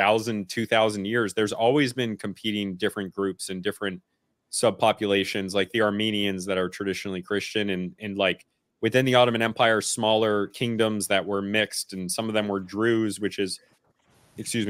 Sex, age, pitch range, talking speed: male, 30-49, 100-115 Hz, 165 wpm